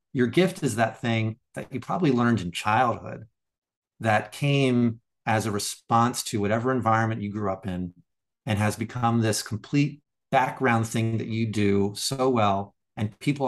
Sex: male